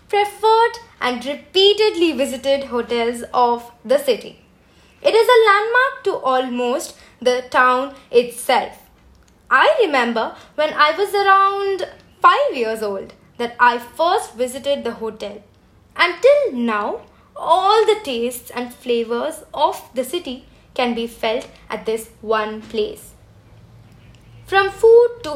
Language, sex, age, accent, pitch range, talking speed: Tamil, female, 20-39, native, 230-355 Hz, 125 wpm